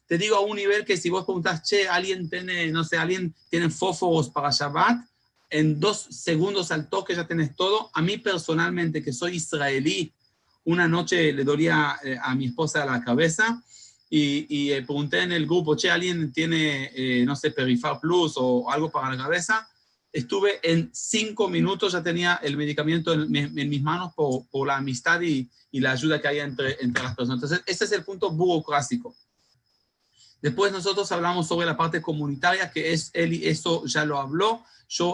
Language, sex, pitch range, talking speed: Spanish, male, 150-185 Hz, 190 wpm